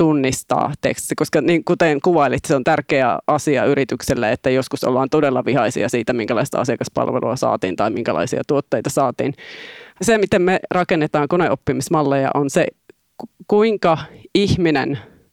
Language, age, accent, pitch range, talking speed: Finnish, 20-39, native, 145-180 Hz, 130 wpm